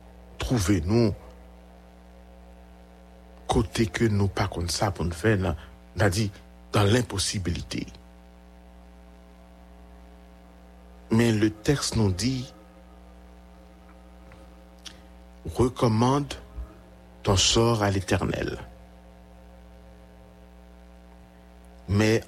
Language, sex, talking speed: English, male, 55 wpm